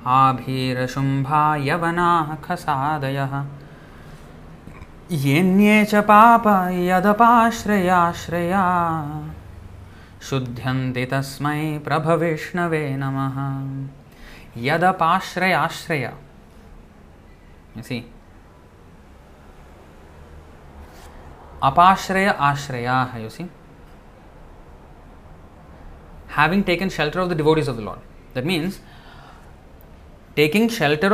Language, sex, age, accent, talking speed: English, male, 30-49, Indian, 45 wpm